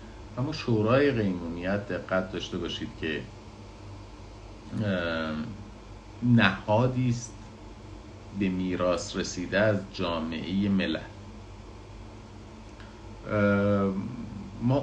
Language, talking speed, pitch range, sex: Persian, 60 wpm, 90-110 Hz, male